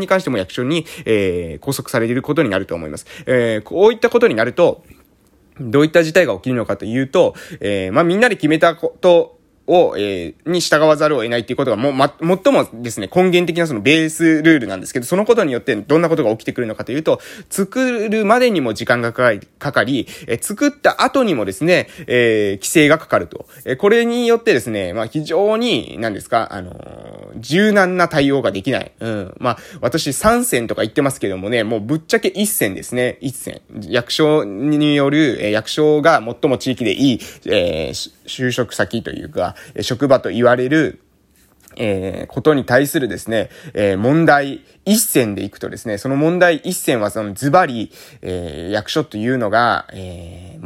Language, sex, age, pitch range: Japanese, male, 20-39, 110-170 Hz